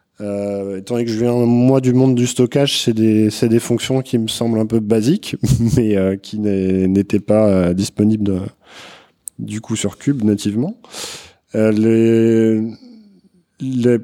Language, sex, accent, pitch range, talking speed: French, male, French, 105-120 Hz, 160 wpm